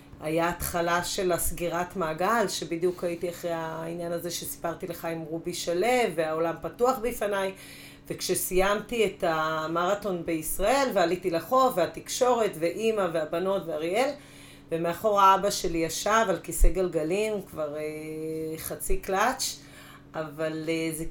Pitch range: 165-195 Hz